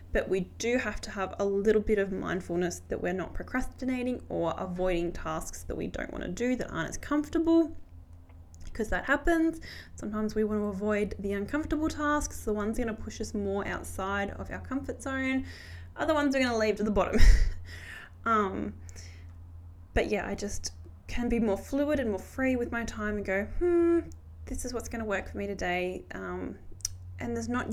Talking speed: 200 wpm